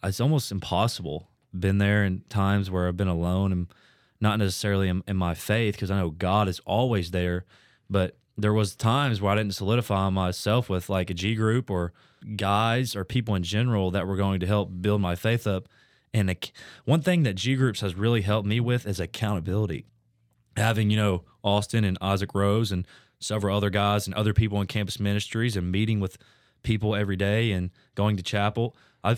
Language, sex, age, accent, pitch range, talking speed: English, male, 20-39, American, 95-115 Hz, 195 wpm